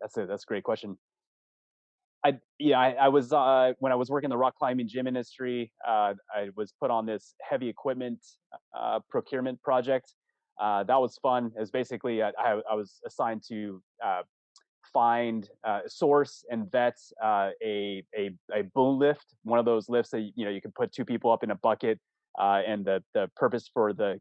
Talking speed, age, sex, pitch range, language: 200 wpm, 20-39, male, 110-135 Hz, English